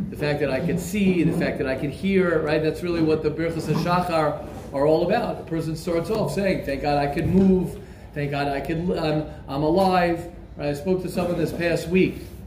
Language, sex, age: English, male, 40-59